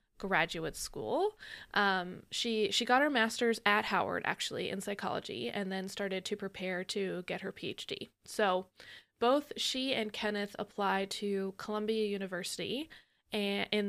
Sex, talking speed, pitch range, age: female, 140 wpm, 190-220 Hz, 20-39